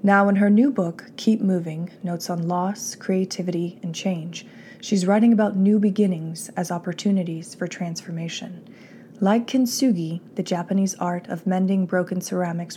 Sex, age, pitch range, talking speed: female, 20-39, 170-205 Hz, 145 wpm